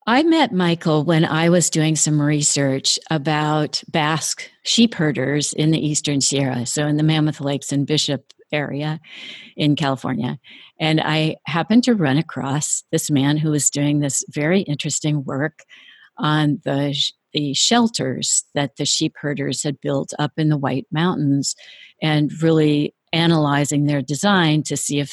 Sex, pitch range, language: female, 140-160 Hz, English